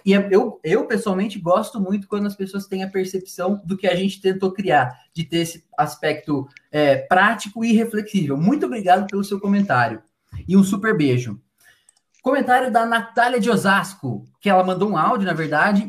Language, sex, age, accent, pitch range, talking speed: Portuguese, male, 20-39, Brazilian, 155-200 Hz, 175 wpm